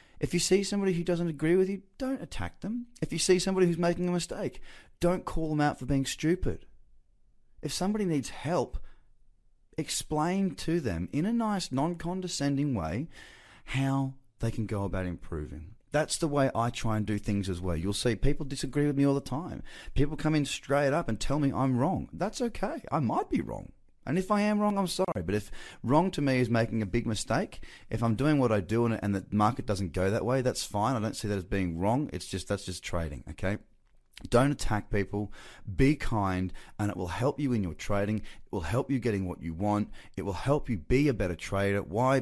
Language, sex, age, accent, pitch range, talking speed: English, male, 30-49, Australian, 90-140 Hz, 220 wpm